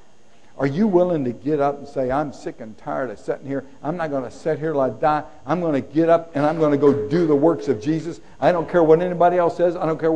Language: English